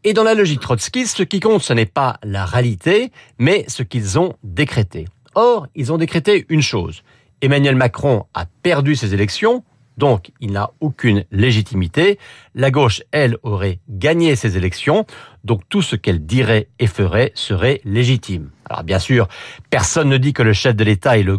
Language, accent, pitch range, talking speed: French, French, 105-160 Hz, 180 wpm